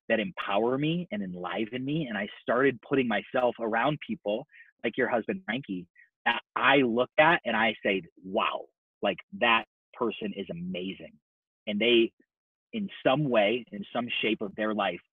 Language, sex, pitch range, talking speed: English, male, 100-150 Hz, 165 wpm